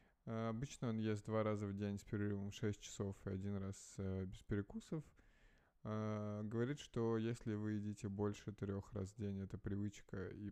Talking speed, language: 185 wpm, Russian